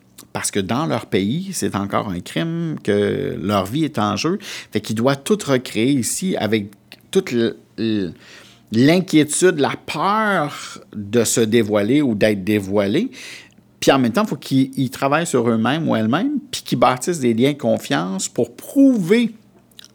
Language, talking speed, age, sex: French, 160 wpm, 50-69, male